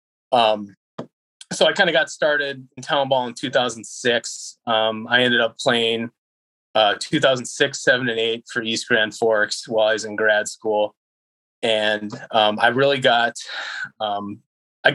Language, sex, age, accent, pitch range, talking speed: English, male, 20-39, American, 110-125 Hz, 155 wpm